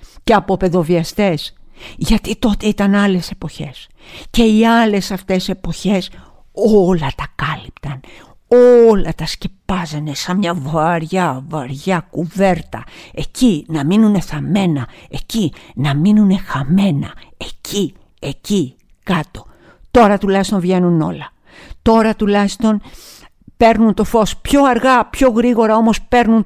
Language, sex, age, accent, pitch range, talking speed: Greek, female, 50-69, Spanish, 175-225 Hz, 115 wpm